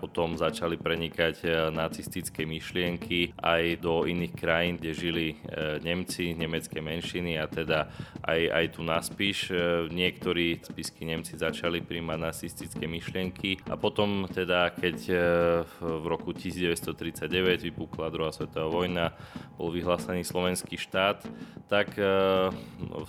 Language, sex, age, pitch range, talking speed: Slovak, male, 20-39, 80-90 Hz, 115 wpm